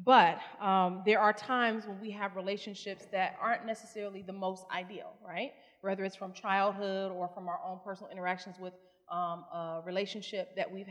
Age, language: 30-49, English